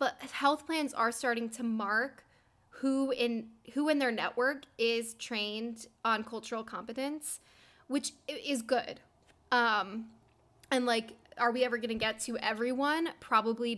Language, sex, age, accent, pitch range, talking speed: English, female, 10-29, American, 225-265 Hz, 145 wpm